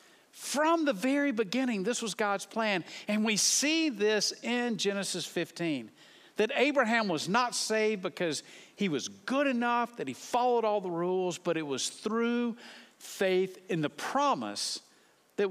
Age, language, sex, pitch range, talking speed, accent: 50-69, English, male, 155-240 Hz, 155 wpm, American